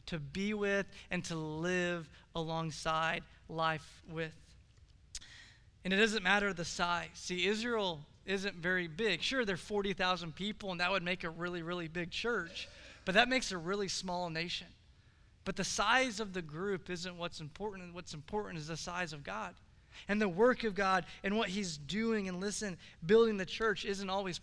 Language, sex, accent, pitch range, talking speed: English, male, American, 175-230 Hz, 180 wpm